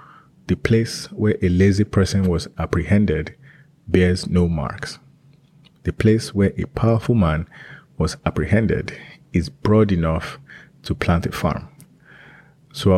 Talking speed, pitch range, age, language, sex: 125 wpm, 90-110 Hz, 30-49, English, male